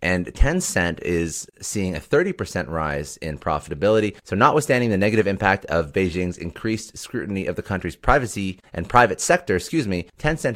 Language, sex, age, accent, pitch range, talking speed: English, male, 30-49, American, 80-105 Hz, 160 wpm